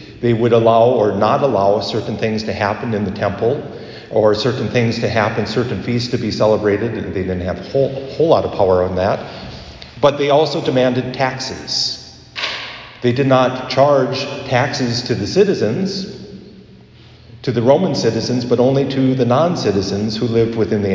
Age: 50-69